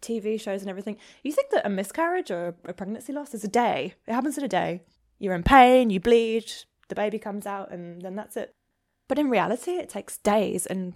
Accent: British